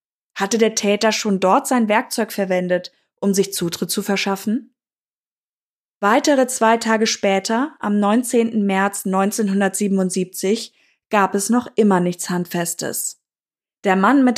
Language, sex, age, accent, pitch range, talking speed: German, female, 20-39, German, 195-235 Hz, 125 wpm